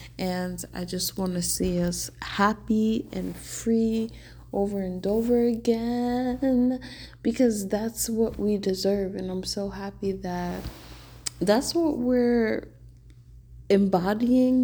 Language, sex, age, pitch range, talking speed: English, female, 20-39, 185-220 Hz, 115 wpm